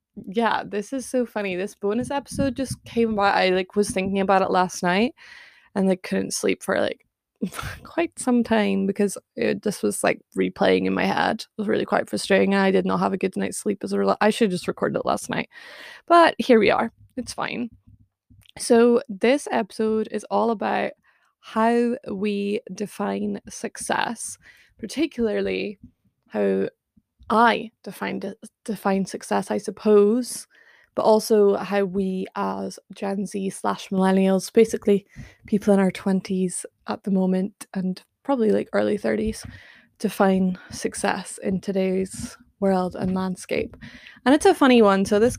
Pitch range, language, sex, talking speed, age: 190-230 Hz, English, female, 155 wpm, 20-39